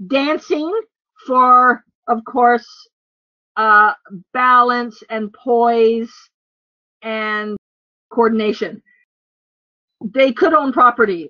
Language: English